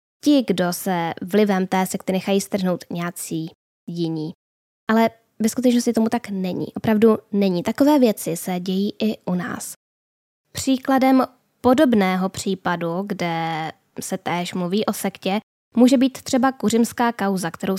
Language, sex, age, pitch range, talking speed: Czech, female, 10-29, 185-225 Hz, 135 wpm